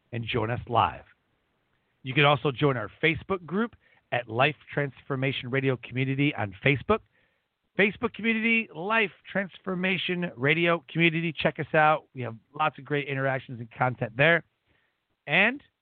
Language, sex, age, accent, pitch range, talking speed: English, male, 40-59, American, 125-180 Hz, 140 wpm